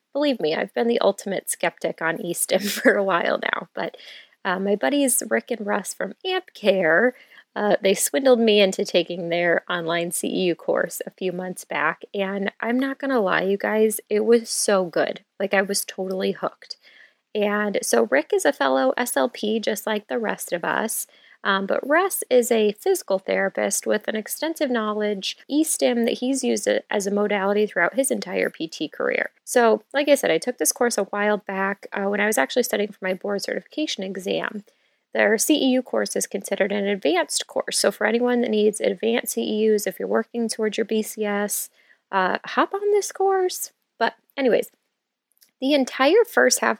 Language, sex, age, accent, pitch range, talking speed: English, female, 20-39, American, 200-265 Hz, 185 wpm